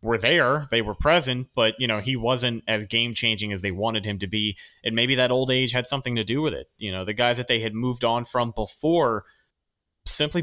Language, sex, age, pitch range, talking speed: English, male, 30-49, 105-135 Hz, 235 wpm